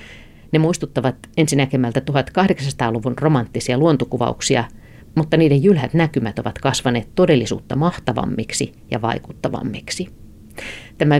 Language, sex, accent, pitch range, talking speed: Finnish, female, native, 115-145 Hz, 90 wpm